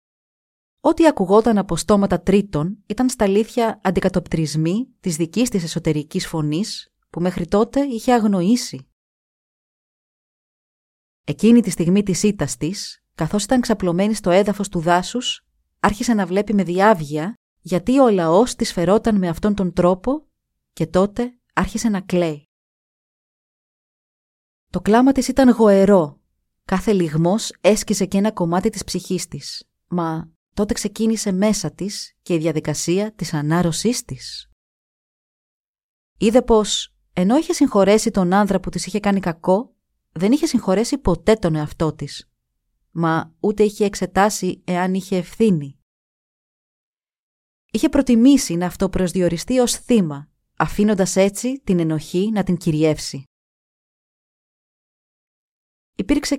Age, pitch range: 30-49, 170-220 Hz